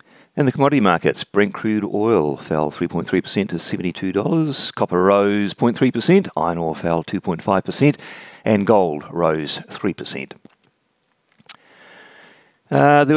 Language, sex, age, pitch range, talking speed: English, male, 40-59, 90-115 Hz, 110 wpm